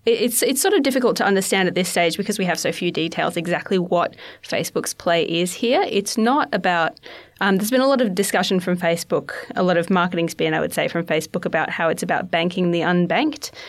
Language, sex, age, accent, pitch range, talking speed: English, female, 20-39, Australian, 170-200 Hz, 230 wpm